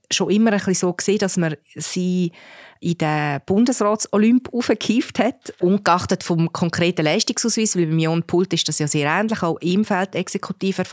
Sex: female